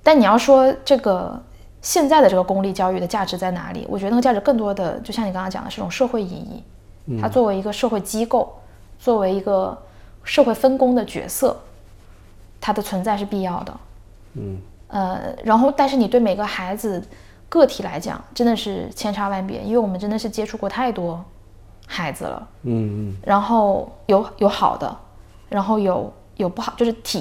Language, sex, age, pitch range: Chinese, female, 10-29, 175-230 Hz